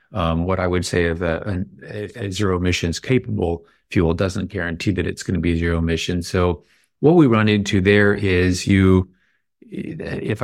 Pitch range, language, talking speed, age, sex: 90-100 Hz, English, 170 wpm, 40-59, male